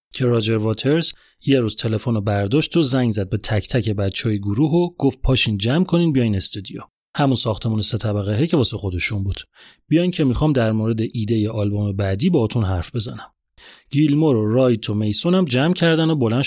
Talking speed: 195 wpm